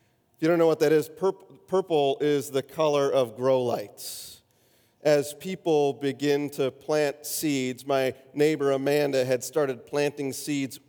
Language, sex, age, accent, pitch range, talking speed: English, male, 40-59, American, 130-150 Hz, 145 wpm